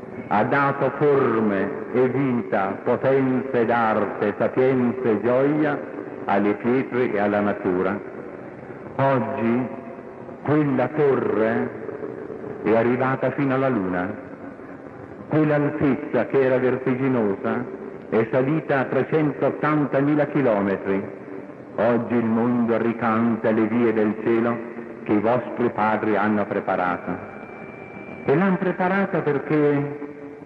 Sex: male